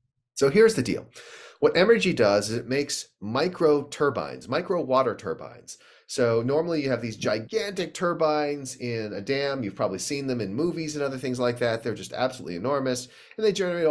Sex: male